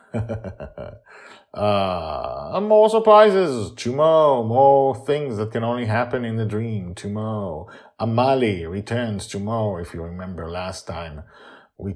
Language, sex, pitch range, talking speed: English, male, 90-115 Hz, 115 wpm